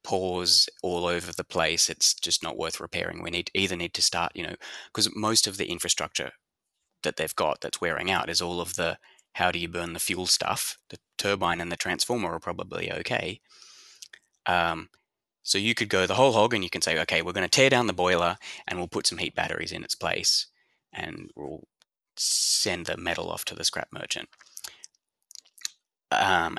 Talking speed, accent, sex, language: 195 wpm, Australian, male, English